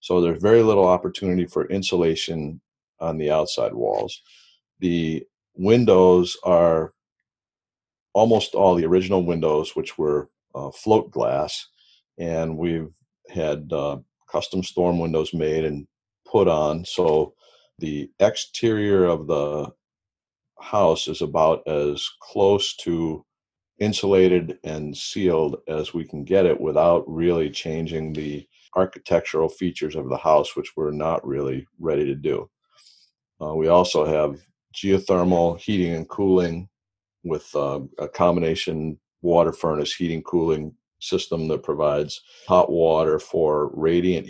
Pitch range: 80-95 Hz